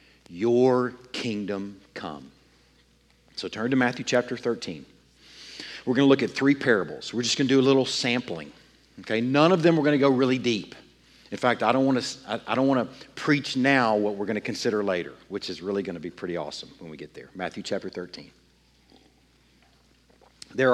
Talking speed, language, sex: 200 wpm, English, male